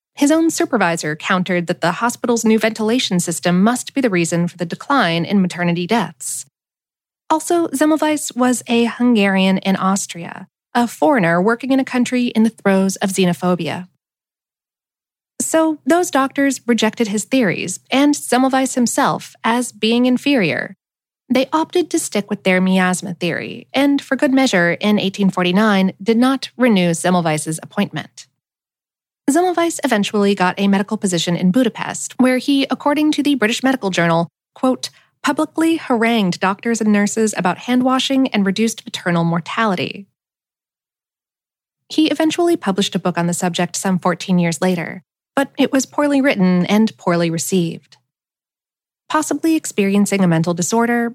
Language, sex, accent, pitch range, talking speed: English, female, American, 180-265 Hz, 145 wpm